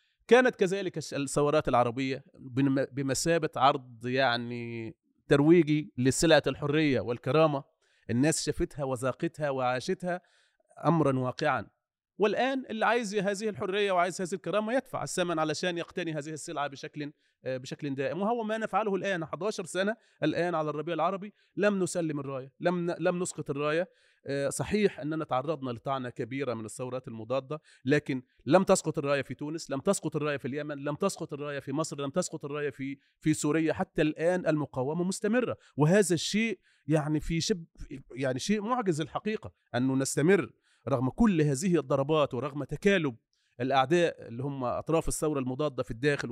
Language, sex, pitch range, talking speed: Arabic, male, 135-175 Hz, 140 wpm